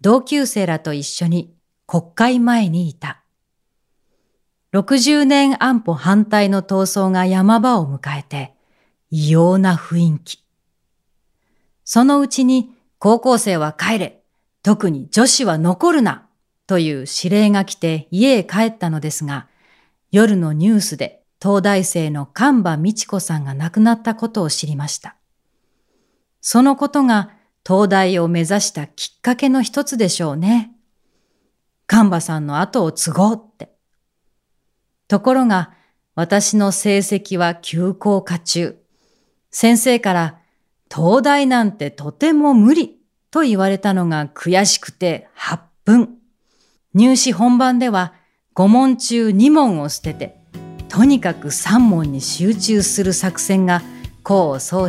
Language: Japanese